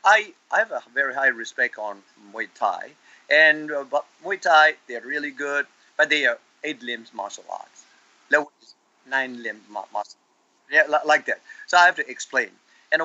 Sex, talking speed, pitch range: male, 175 wpm, 130-220 Hz